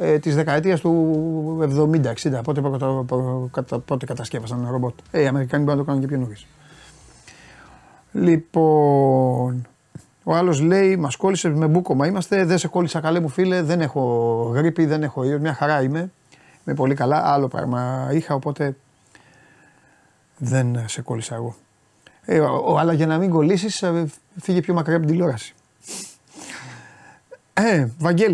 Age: 30-49